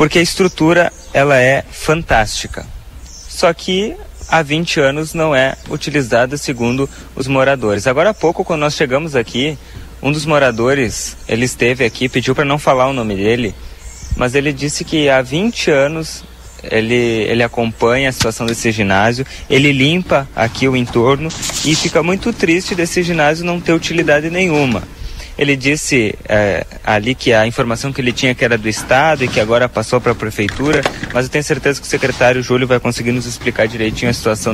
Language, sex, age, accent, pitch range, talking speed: Portuguese, male, 20-39, Brazilian, 110-155 Hz, 175 wpm